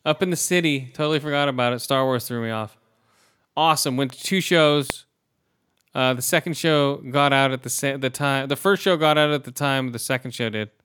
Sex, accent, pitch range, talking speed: male, American, 115-140 Hz, 225 wpm